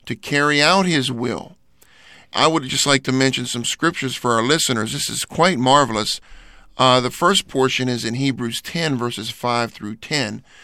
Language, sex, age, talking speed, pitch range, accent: English, male, 50-69, 180 wpm, 120-155 Hz, American